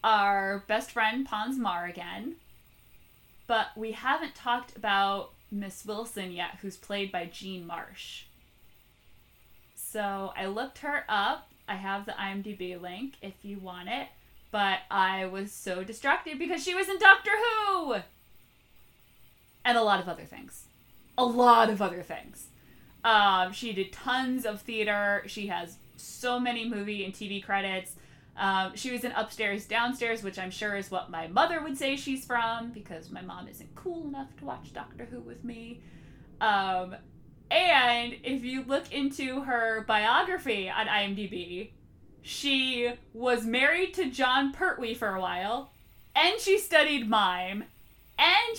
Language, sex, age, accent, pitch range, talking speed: English, female, 20-39, American, 195-260 Hz, 150 wpm